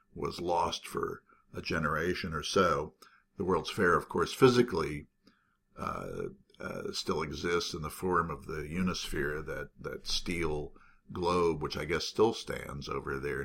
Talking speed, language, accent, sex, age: 150 wpm, English, American, male, 50-69